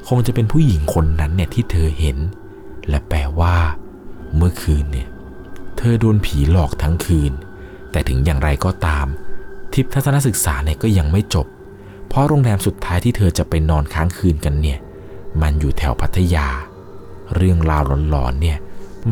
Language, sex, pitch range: Thai, male, 75-95 Hz